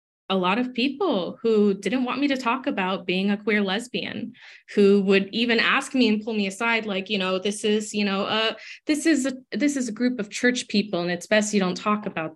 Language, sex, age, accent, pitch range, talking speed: English, female, 20-39, American, 180-220 Hz, 240 wpm